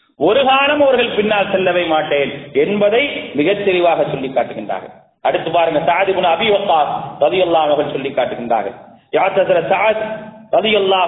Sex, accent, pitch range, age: male, Indian, 175-235 Hz, 40-59